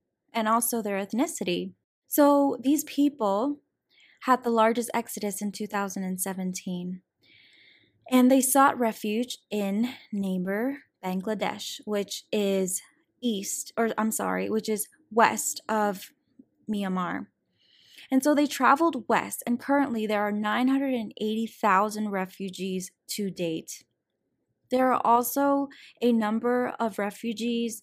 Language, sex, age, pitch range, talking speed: English, female, 10-29, 200-255 Hz, 110 wpm